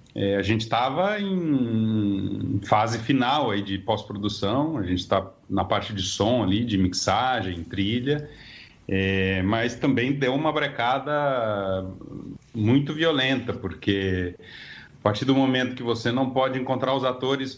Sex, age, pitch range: male, 40-59, 100-125 Hz